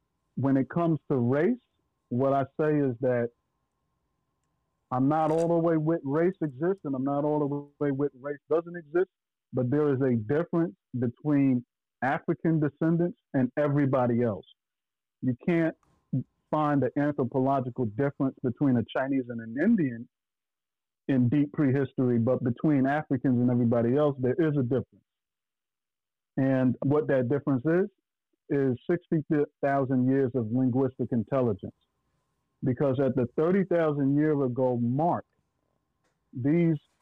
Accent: American